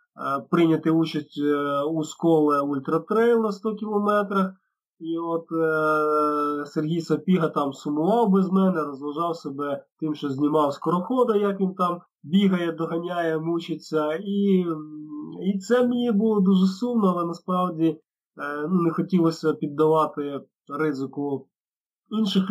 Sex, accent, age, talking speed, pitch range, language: male, native, 20-39, 115 wpm, 145-175 Hz, Ukrainian